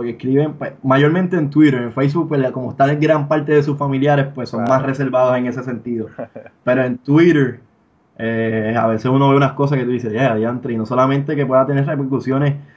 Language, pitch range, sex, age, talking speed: Spanish, 125-150 Hz, male, 20-39, 210 wpm